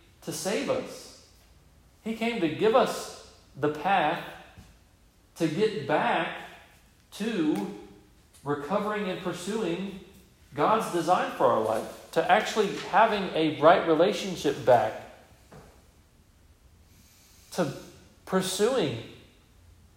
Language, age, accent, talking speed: English, 40-59, American, 95 wpm